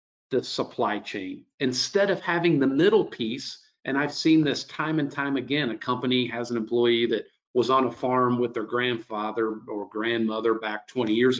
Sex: male